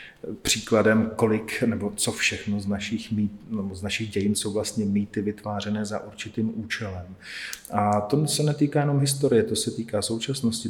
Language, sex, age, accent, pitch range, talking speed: Czech, male, 40-59, native, 105-120 Hz, 145 wpm